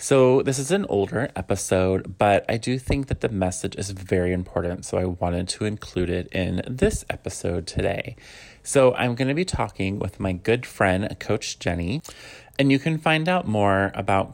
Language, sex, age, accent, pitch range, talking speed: English, male, 30-49, American, 90-115 Hz, 190 wpm